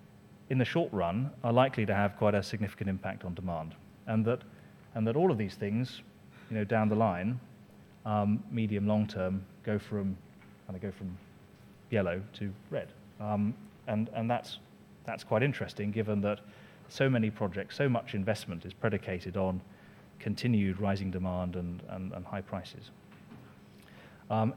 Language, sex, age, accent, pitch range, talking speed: English, male, 30-49, British, 95-115 Hz, 165 wpm